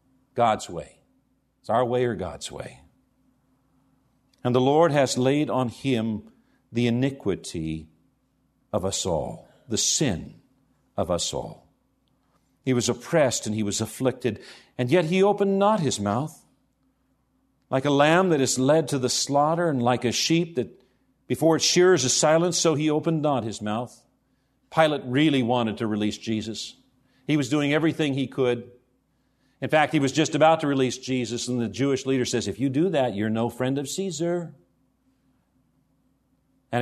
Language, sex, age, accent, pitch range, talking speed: English, male, 50-69, American, 125-150 Hz, 165 wpm